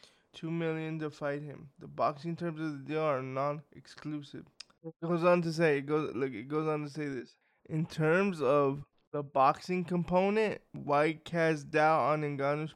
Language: English